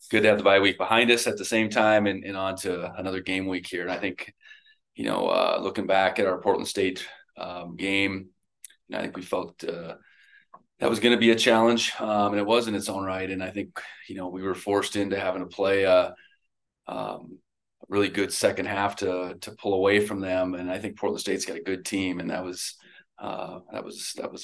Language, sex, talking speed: English, male, 240 wpm